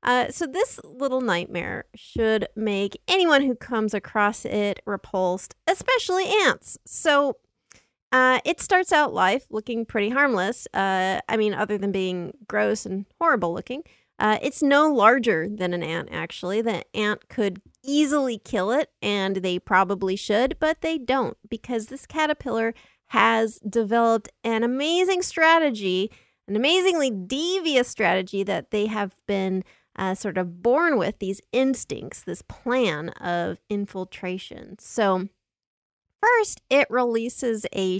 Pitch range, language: 200-275 Hz, English